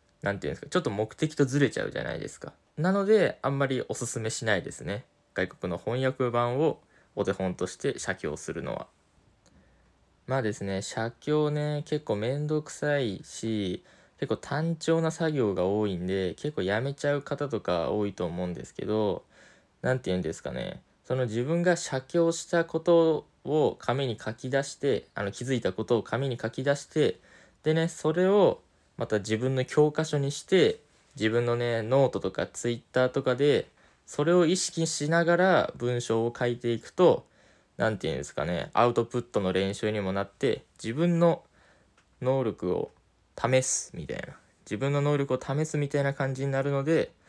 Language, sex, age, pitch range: Japanese, male, 20-39, 105-145 Hz